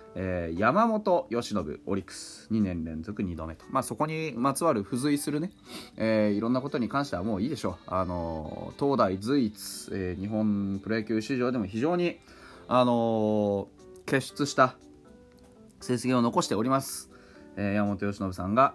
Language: Japanese